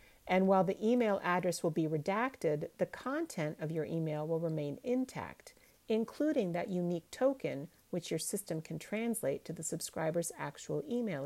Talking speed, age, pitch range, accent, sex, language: 160 wpm, 40-59, 155-195 Hz, American, female, English